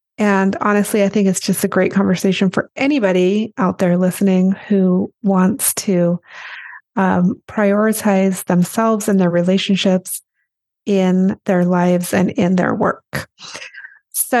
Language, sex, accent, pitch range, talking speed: English, female, American, 190-230 Hz, 130 wpm